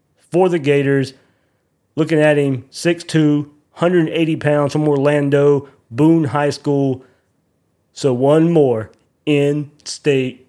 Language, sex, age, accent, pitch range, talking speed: English, male, 30-49, American, 130-160 Hz, 105 wpm